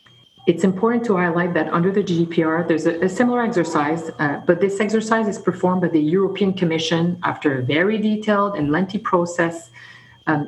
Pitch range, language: 155-185 Hz, English